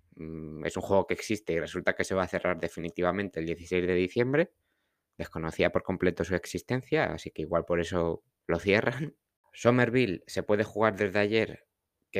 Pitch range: 90-115 Hz